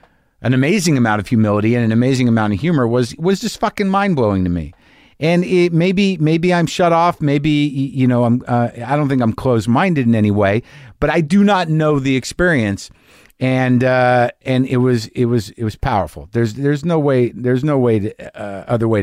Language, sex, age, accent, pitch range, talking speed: English, male, 50-69, American, 95-130 Hz, 210 wpm